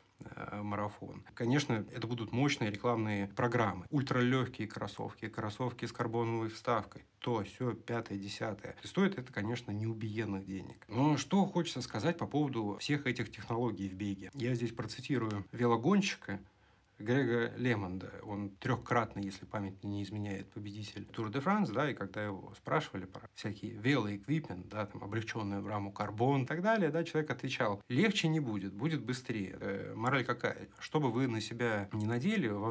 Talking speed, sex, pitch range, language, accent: 155 wpm, male, 105-125 Hz, Russian, native